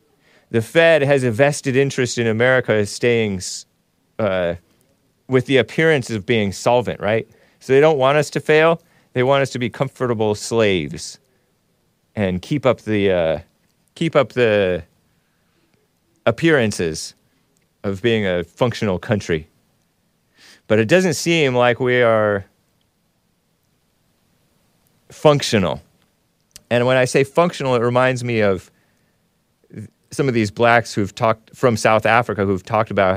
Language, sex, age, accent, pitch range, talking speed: English, male, 30-49, American, 105-135 Hz, 135 wpm